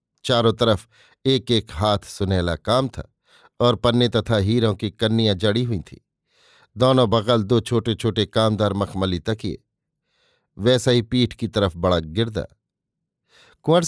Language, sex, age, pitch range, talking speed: Hindi, male, 50-69, 105-125 Hz, 145 wpm